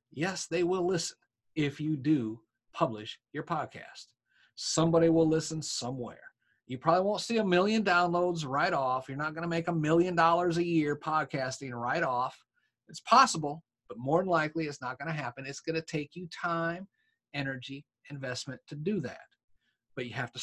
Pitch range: 125-165 Hz